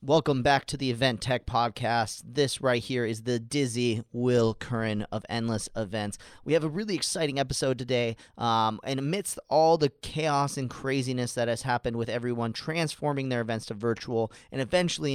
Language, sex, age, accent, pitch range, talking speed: English, male, 30-49, American, 115-155 Hz, 180 wpm